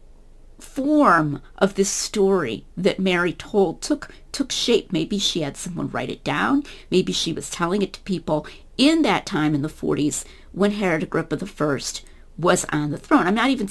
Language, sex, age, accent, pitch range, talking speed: English, female, 40-59, American, 155-215 Hz, 180 wpm